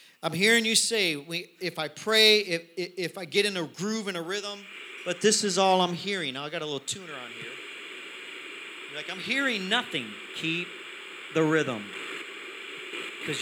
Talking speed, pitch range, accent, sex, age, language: 180 wpm, 145-215 Hz, American, male, 40-59, English